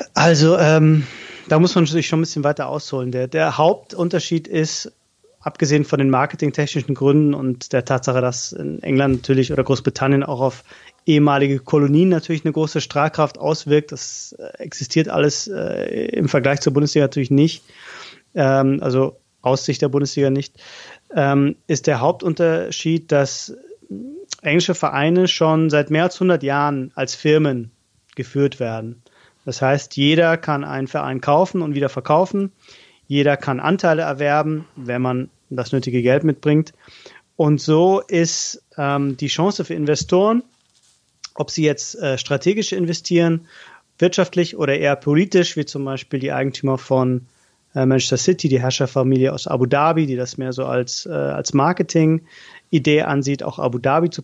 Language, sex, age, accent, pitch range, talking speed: German, male, 30-49, German, 135-160 Hz, 150 wpm